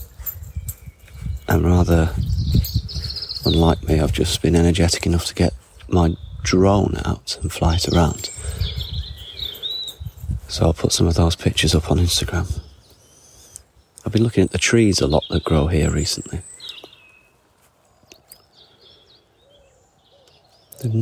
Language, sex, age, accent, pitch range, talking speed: English, male, 30-49, British, 80-95 Hz, 115 wpm